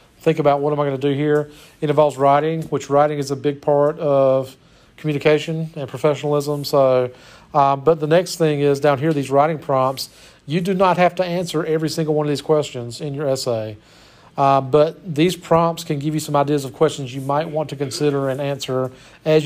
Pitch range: 140-165 Hz